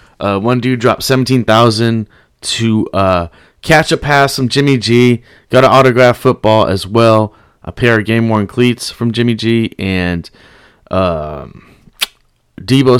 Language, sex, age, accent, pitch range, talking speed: English, male, 30-49, American, 105-135 Hz, 145 wpm